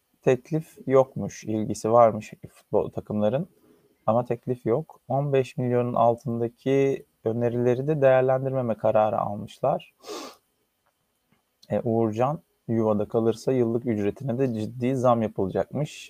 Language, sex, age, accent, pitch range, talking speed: Turkish, male, 30-49, native, 110-135 Hz, 100 wpm